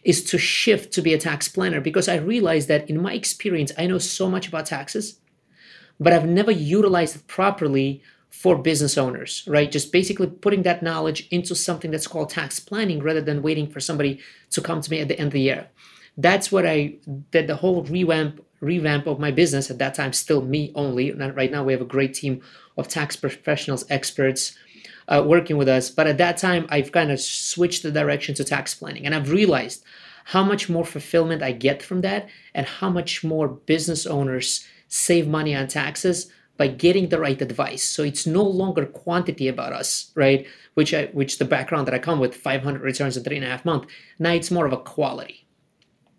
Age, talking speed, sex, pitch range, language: 30-49, 210 wpm, male, 140-175 Hz, English